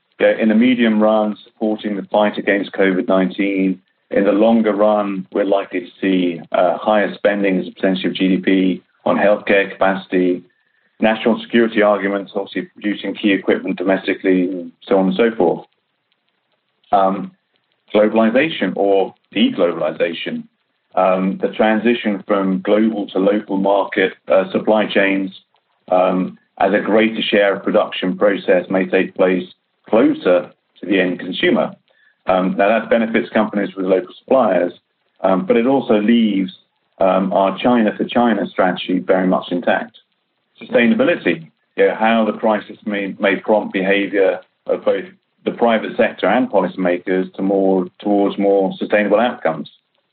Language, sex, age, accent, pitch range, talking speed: English, male, 40-59, British, 95-105 Hz, 140 wpm